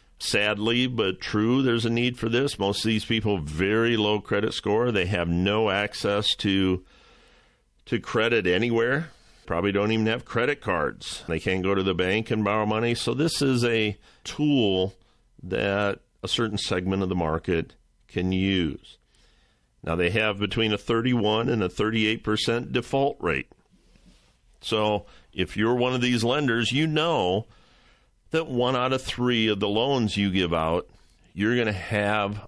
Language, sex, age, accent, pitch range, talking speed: English, male, 50-69, American, 95-120 Hz, 165 wpm